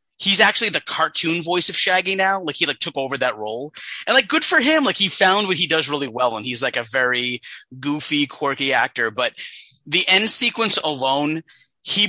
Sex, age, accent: male, 30-49, American